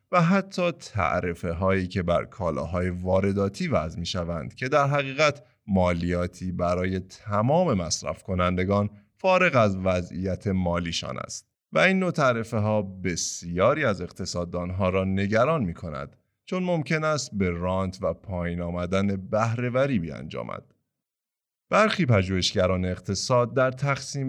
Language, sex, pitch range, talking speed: Persian, male, 90-135 Hz, 125 wpm